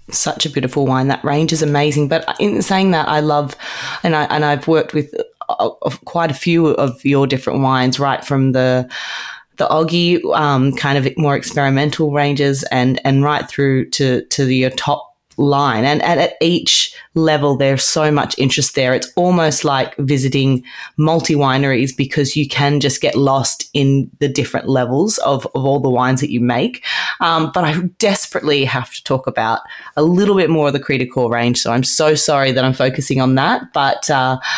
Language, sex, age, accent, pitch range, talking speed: English, female, 20-39, Australian, 130-155 Hz, 190 wpm